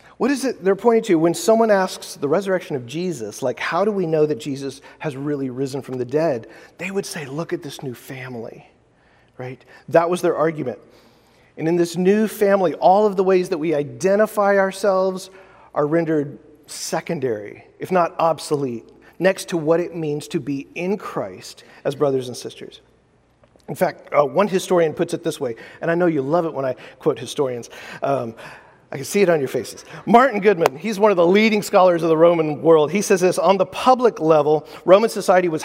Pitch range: 145-190 Hz